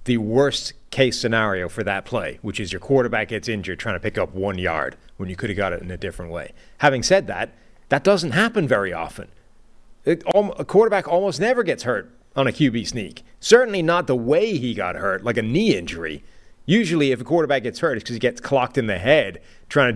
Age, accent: 30-49, American